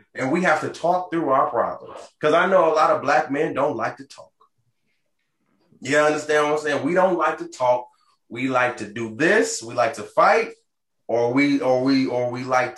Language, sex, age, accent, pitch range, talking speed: English, male, 20-39, American, 115-150 Hz, 215 wpm